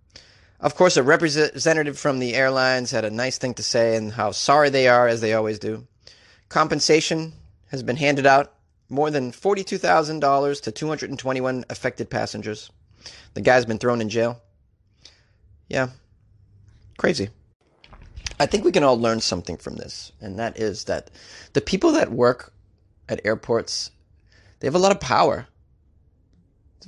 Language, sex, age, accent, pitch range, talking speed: English, male, 30-49, American, 105-150 Hz, 150 wpm